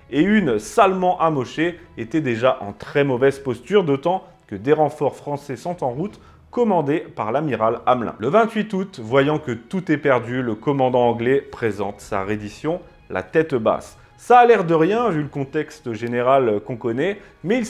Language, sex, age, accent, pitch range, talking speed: French, male, 30-49, French, 130-185 Hz, 175 wpm